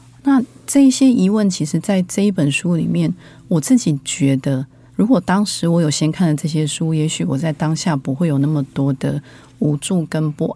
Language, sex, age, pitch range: Chinese, female, 30-49, 145-190 Hz